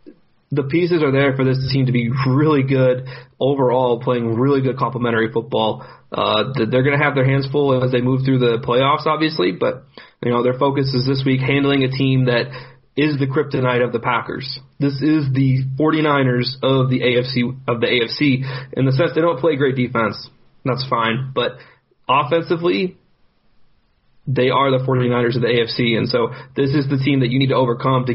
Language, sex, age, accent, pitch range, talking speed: English, male, 30-49, American, 125-140 Hz, 195 wpm